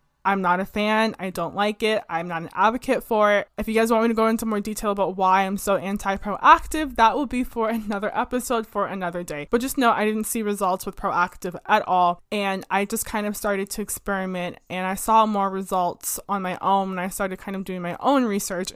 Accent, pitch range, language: American, 185-220 Hz, English